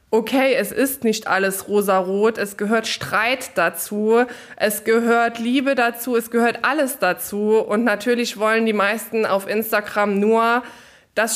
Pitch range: 205-245 Hz